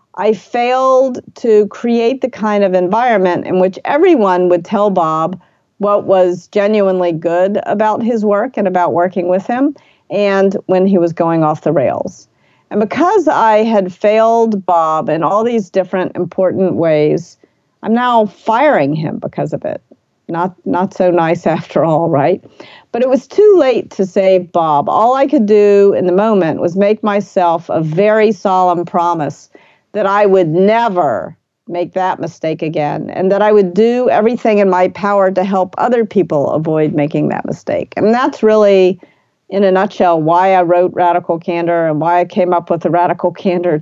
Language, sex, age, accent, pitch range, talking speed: English, female, 50-69, American, 175-220 Hz, 175 wpm